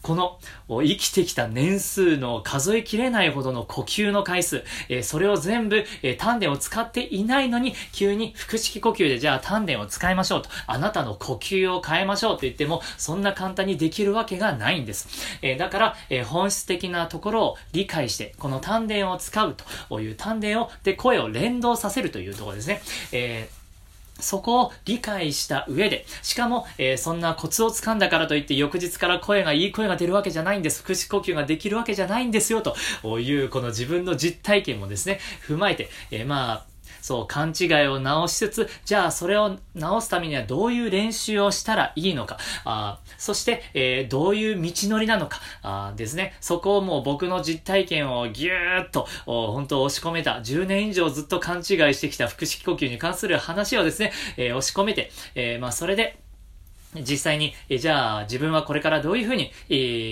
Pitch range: 130-205 Hz